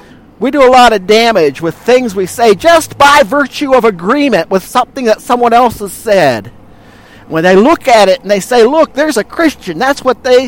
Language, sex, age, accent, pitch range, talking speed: English, male, 50-69, American, 190-250 Hz, 210 wpm